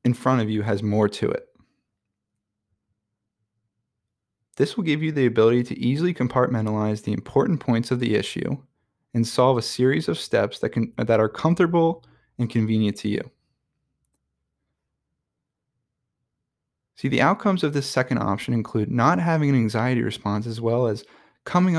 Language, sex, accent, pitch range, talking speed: English, male, American, 110-145 Hz, 150 wpm